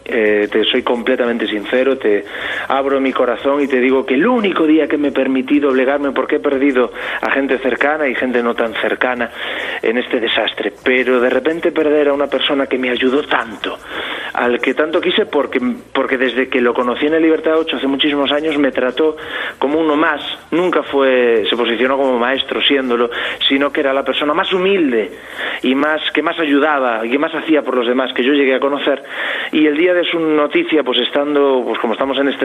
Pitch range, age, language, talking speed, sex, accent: 125-145 Hz, 30-49, Spanish, 205 wpm, male, Spanish